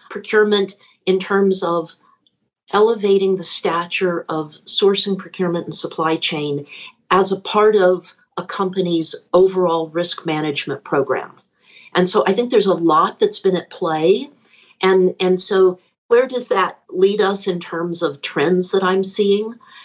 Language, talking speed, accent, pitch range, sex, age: English, 150 wpm, American, 165-200 Hz, female, 50-69